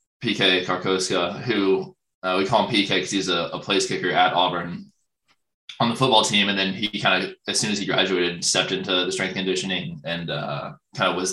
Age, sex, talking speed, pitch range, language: 20-39, male, 205 wpm, 90-105 Hz, English